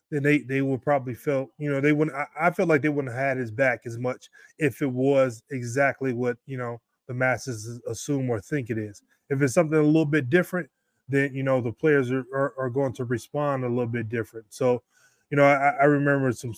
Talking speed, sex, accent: 230 wpm, male, American